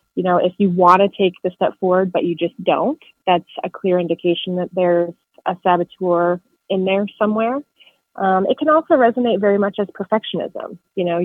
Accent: American